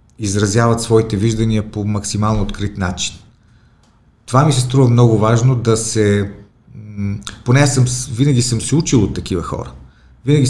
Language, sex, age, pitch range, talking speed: Bulgarian, male, 40-59, 100-125 Hz, 150 wpm